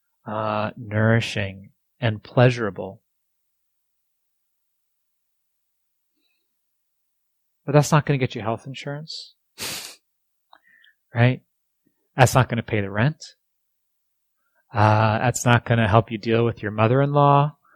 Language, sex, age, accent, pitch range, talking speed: English, male, 30-49, American, 110-135 Hz, 110 wpm